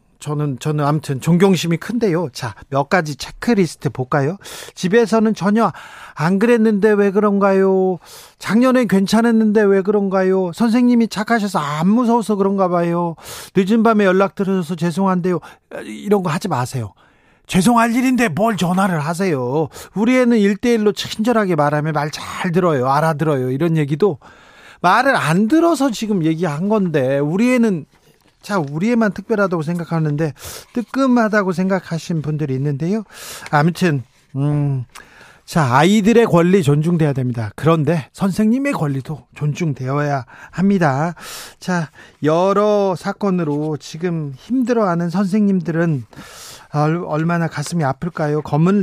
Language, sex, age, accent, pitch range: Korean, male, 40-59, native, 150-205 Hz